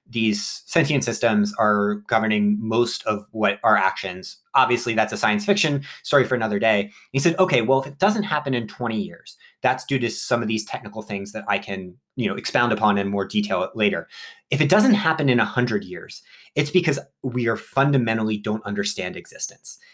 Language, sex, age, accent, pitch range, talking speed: English, male, 30-49, American, 105-135 Hz, 185 wpm